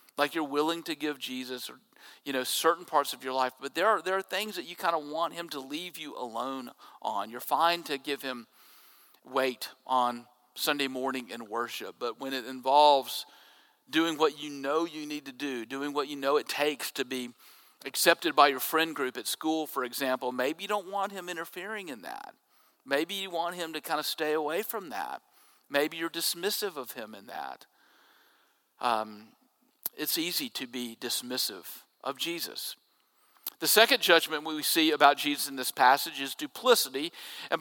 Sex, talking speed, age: male, 190 wpm, 50-69